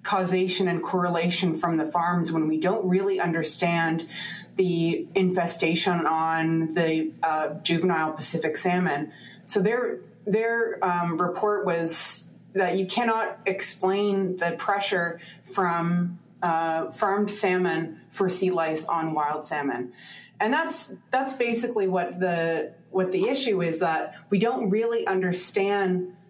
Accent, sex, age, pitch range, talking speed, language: American, female, 30-49, 165-195 Hz, 130 wpm, English